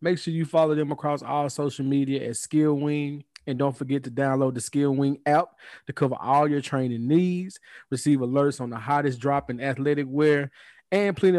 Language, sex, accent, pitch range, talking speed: English, male, American, 125-145 Hz, 200 wpm